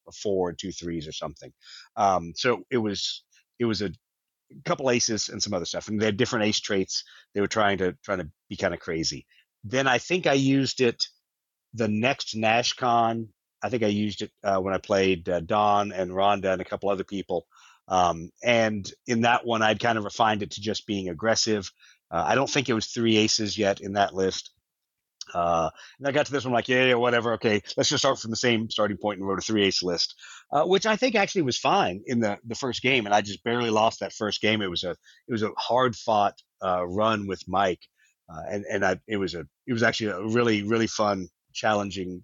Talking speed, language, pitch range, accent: 225 wpm, English, 95-120 Hz, American